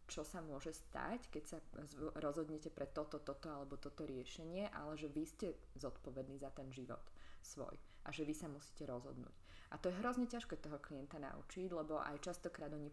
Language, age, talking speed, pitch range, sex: Slovak, 20-39, 185 wpm, 140-160 Hz, female